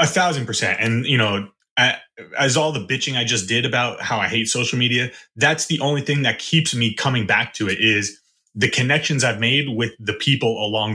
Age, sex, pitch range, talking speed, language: 30-49, male, 110-135 Hz, 215 wpm, English